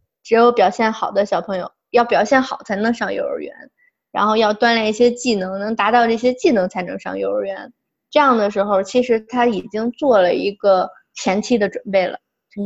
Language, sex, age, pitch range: Chinese, female, 20-39, 200-250 Hz